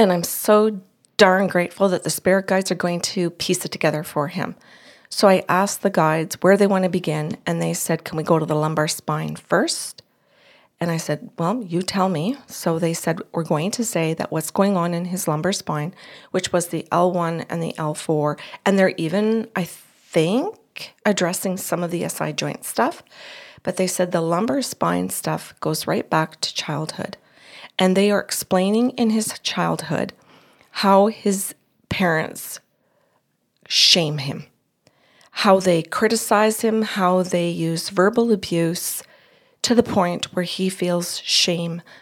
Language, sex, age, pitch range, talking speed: English, female, 40-59, 165-200 Hz, 170 wpm